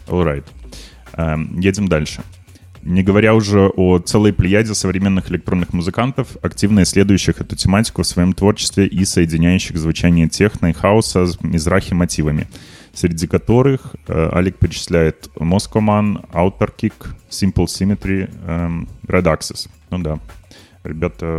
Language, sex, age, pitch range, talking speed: Russian, male, 20-39, 85-105 Hz, 120 wpm